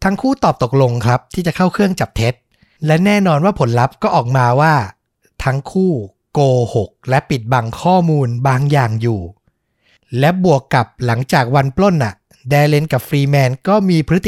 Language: Thai